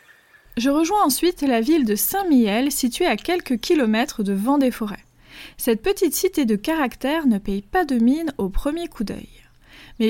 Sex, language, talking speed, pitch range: female, French, 170 wpm, 220-300 Hz